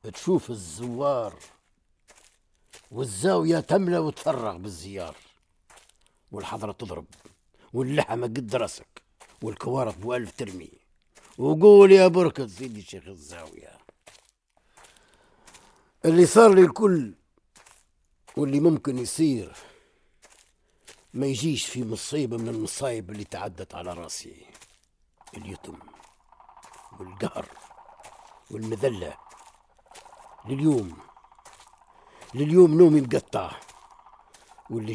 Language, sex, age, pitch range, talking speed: Arabic, male, 60-79, 105-150 Hz, 75 wpm